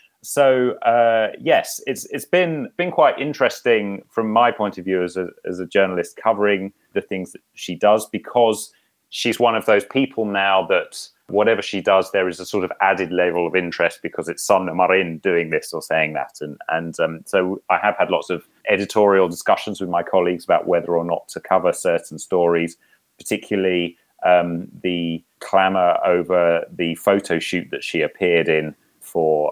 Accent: British